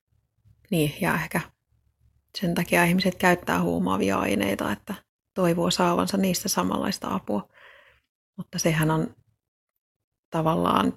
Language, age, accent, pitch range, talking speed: Finnish, 30-49, native, 150-185 Hz, 110 wpm